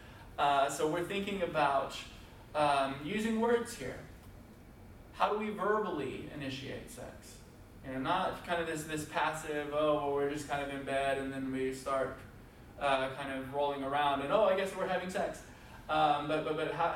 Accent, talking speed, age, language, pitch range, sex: American, 180 wpm, 20-39, English, 125-160 Hz, male